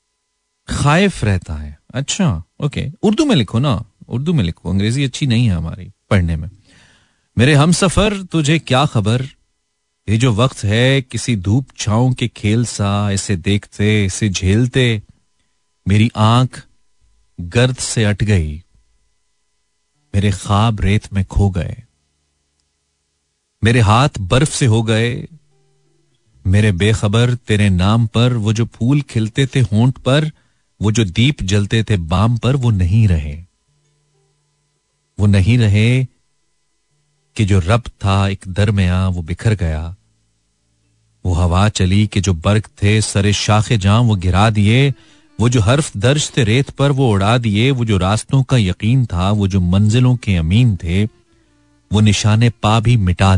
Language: Hindi